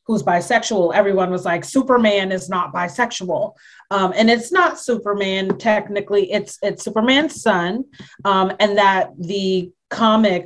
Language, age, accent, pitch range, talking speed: English, 30-49, American, 185-235 Hz, 140 wpm